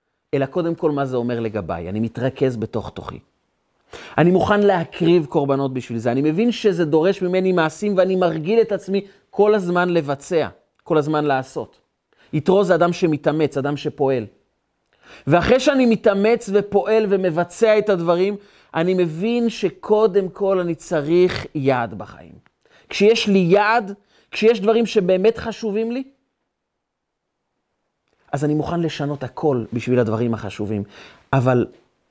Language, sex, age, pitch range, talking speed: Hebrew, male, 30-49, 115-185 Hz, 135 wpm